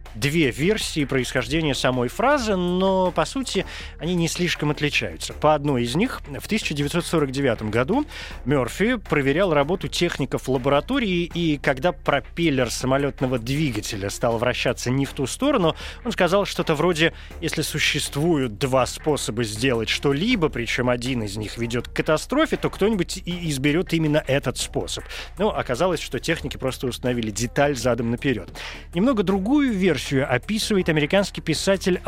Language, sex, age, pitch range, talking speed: Russian, male, 20-39, 125-175 Hz, 140 wpm